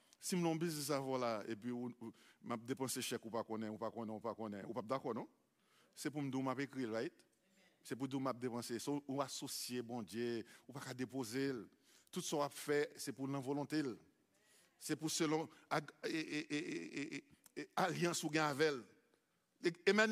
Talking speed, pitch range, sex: 200 wpm, 135-180 Hz, male